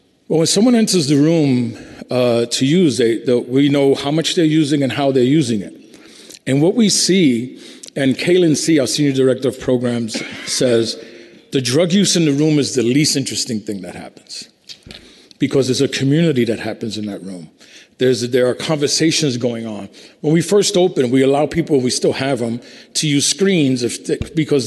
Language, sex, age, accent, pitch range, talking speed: English, male, 40-59, American, 125-160 Hz, 190 wpm